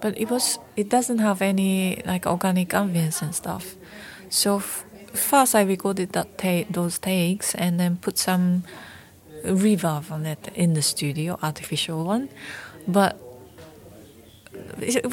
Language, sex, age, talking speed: Swedish, female, 30-49, 135 wpm